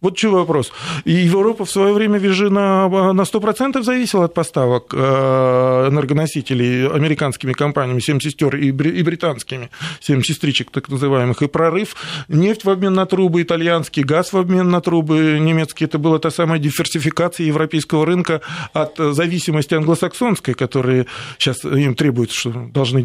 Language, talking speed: Russian, 145 wpm